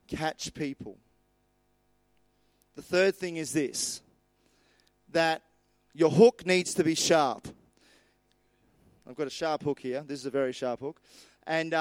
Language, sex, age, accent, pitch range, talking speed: English, male, 30-49, Australian, 160-200 Hz, 135 wpm